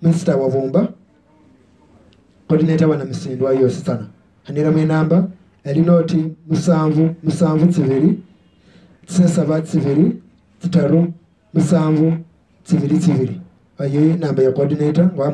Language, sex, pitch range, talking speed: English, male, 145-175 Hz, 95 wpm